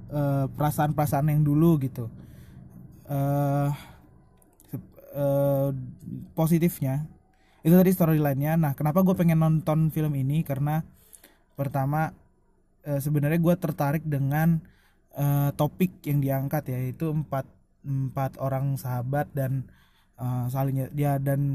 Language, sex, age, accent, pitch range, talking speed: Indonesian, male, 20-39, native, 135-160 Hz, 115 wpm